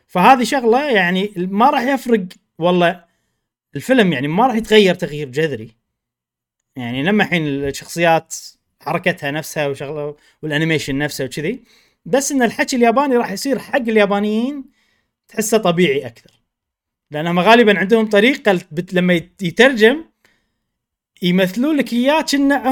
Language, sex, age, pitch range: Arabic, male, 30-49, 145-225 Hz